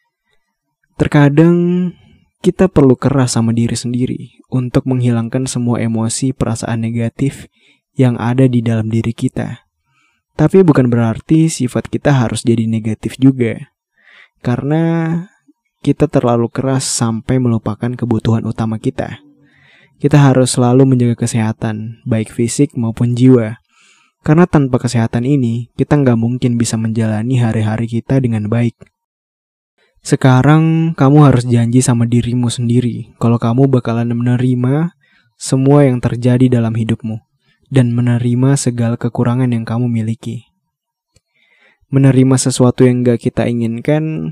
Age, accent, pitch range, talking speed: 20-39, native, 115-135 Hz, 120 wpm